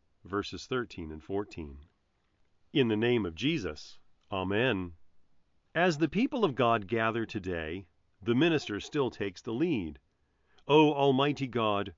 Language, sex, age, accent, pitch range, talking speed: English, male, 40-59, American, 90-140 Hz, 135 wpm